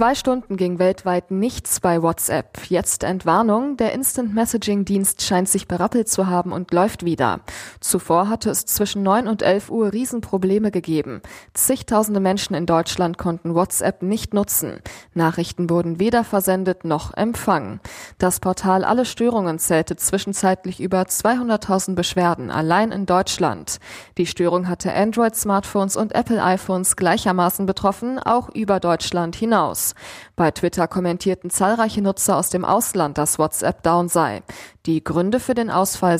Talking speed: 140 wpm